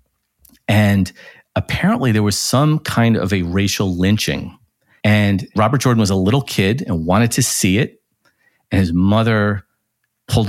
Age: 40-59